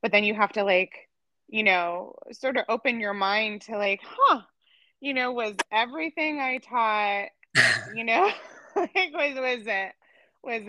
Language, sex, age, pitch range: English, female, 20-39, 185-245 Hz